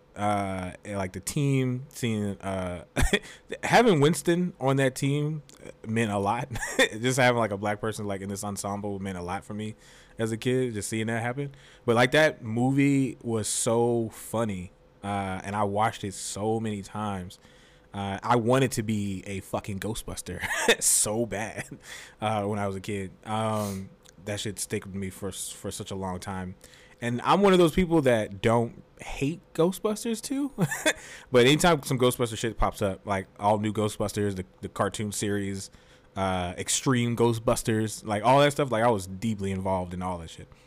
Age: 20-39